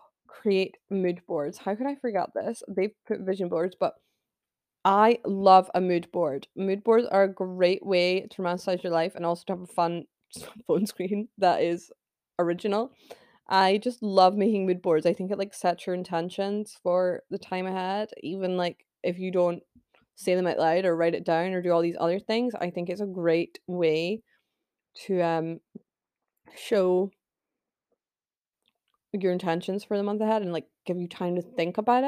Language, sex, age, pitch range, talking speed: English, female, 20-39, 175-215 Hz, 185 wpm